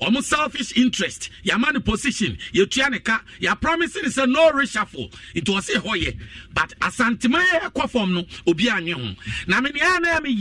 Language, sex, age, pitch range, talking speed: English, male, 50-69, 180-285 Hz, 160 wpm